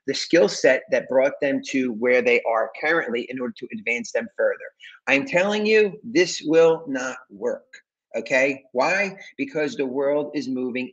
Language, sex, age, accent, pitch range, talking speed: English, male, 40-59, American, 130-200 Hz, 170 wpm